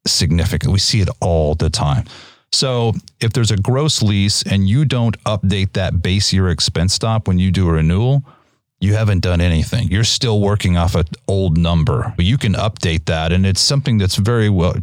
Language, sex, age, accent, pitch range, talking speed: English, male, 30-49, American, 90-115 Hz, 200 wpm